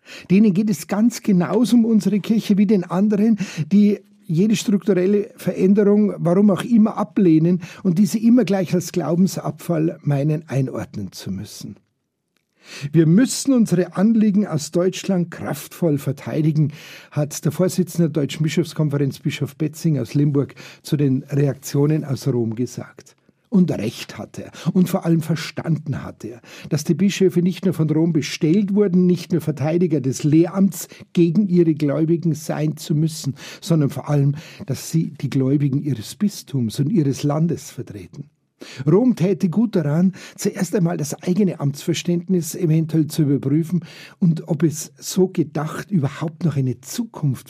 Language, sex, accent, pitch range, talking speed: German, male, Austrian, 150-190 Hz, 150 wpm